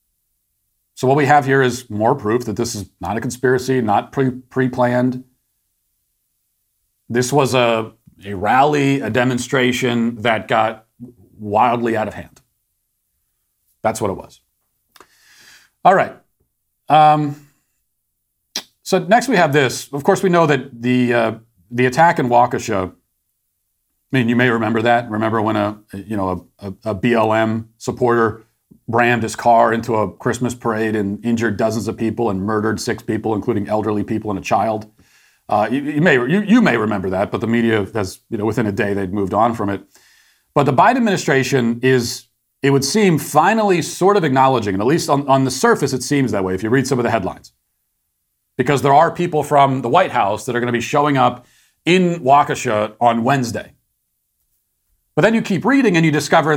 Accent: American